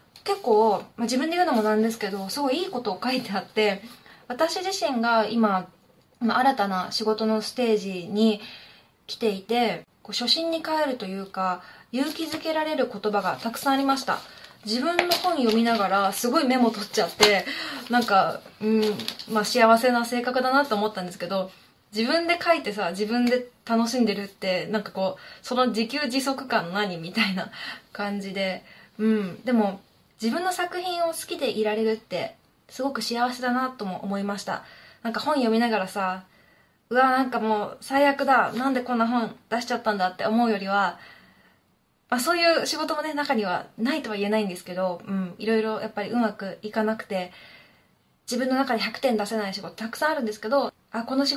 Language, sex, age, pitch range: Japanese, female, 20-39, 205-255 Hz